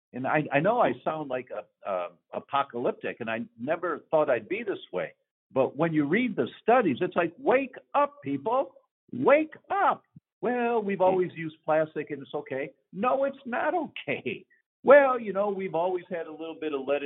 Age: 50-69